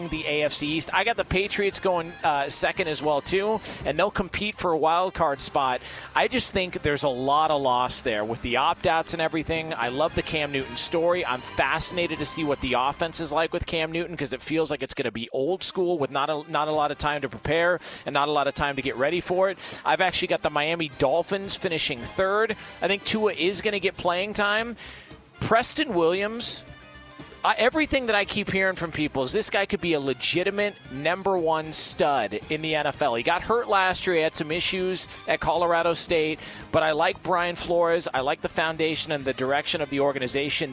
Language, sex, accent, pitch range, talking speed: English, male, American, 135-175 Hz, 220 wpm